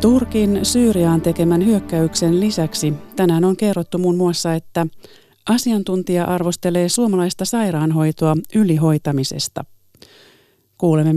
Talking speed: 90 wpm